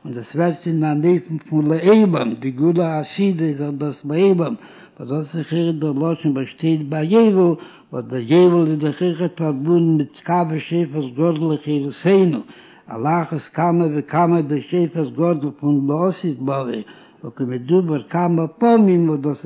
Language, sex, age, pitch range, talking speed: Hebrew, male, 60-79, 150-175 Hz, 100 wpm